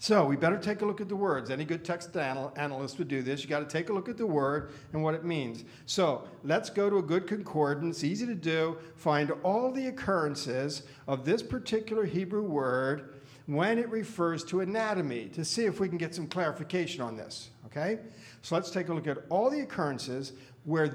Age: 50-69